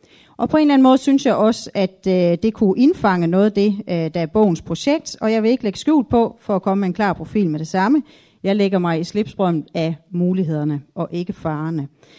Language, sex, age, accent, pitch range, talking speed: Danish, female, 30-49, native, 175-235 Hz, 230 wpm